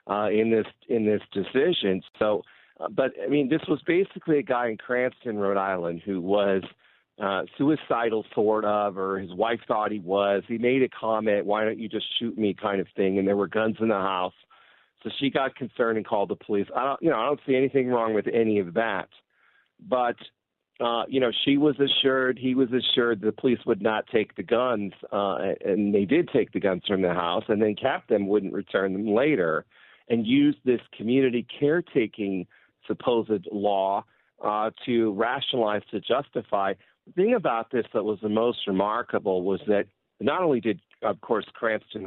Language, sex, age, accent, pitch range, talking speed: English, male, 50-69, American, 100-125 Hz, 195 wpm